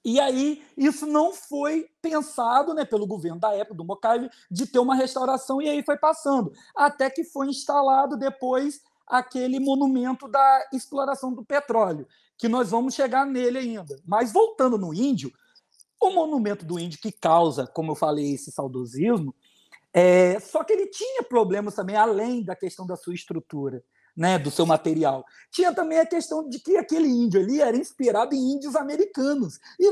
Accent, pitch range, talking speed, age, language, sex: Brazilian, 180-285 Hz, 170 wpm, 40-59, Portuguese, male